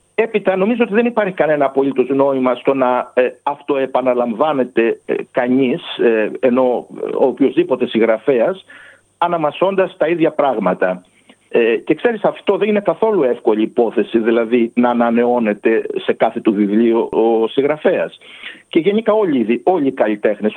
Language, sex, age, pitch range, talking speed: Greek, male, 60-79, 130-205 Hz, 135 wpm